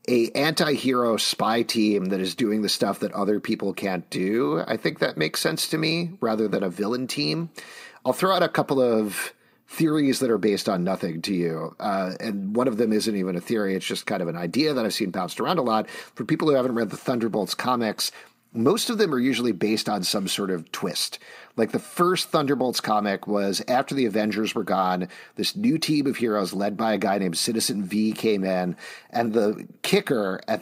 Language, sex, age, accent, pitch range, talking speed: English, male, 40-59, American, 100-130 Hz, 215 wpm